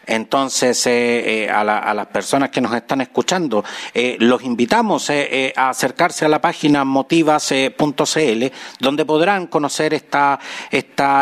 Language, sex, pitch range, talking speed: Spanish, male, 130-155 Hz, 150 wpm